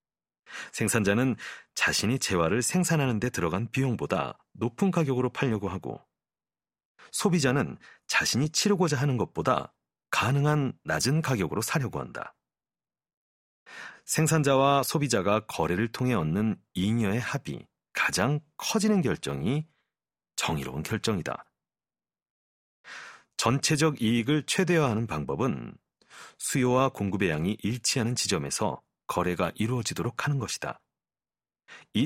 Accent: native